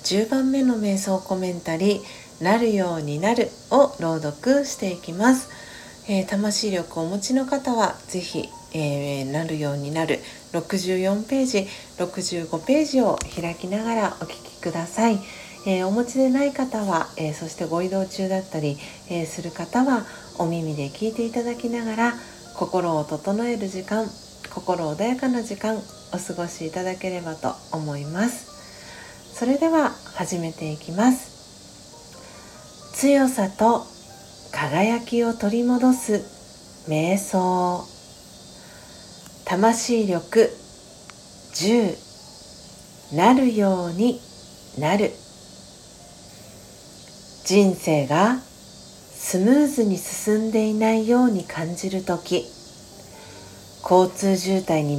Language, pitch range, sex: Japanese, 170-230 Hz, female